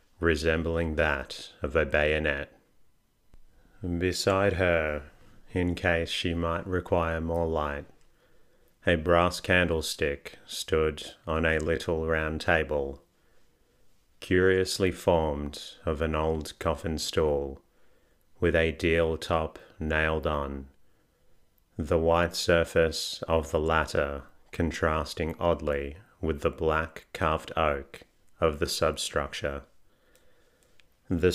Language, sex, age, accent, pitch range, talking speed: English, male, 30-49, Australian, 75-85 Hz, 100 wpm